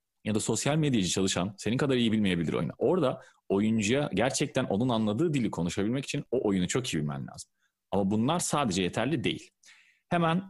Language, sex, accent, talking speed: Turkish, male, native, 170 wpm